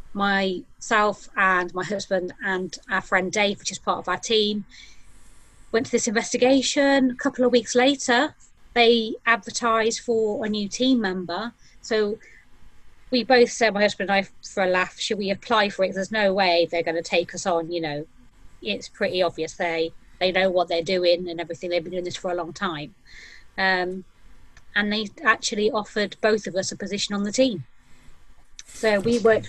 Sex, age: female, 30-49